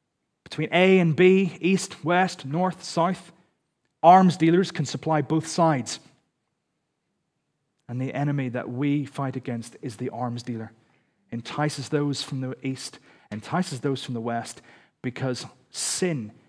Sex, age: male, 30-49